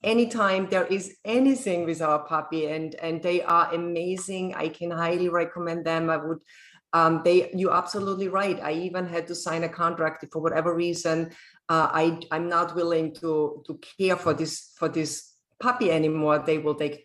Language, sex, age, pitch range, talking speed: English, female, 30-49, 160-195 Hz, 180 wpm